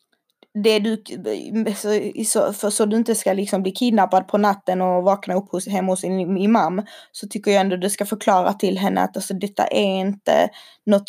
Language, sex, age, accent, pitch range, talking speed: Swedish, female, 20-39, native, 190-225 Hz, 185 wpm